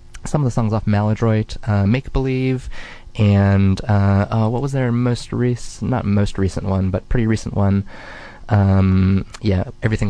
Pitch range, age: 100-125 Hz, 20-39